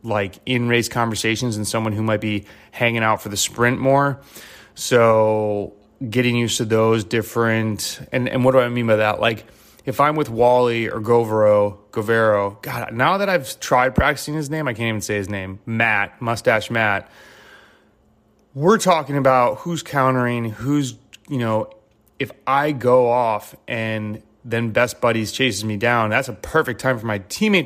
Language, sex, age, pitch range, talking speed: English, male, 30-49, 110-140 Hz, 170 wpm